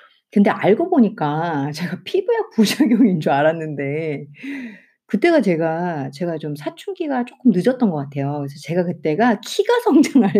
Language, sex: Korean, female